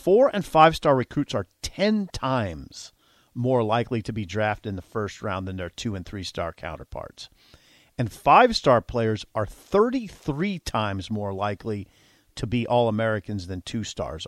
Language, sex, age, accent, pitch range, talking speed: English, male, 40-59, American, 105-145 Hz, 145 wpm